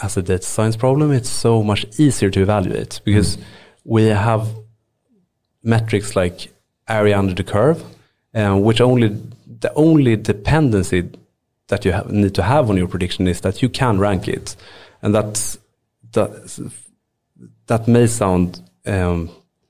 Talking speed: 145 wpm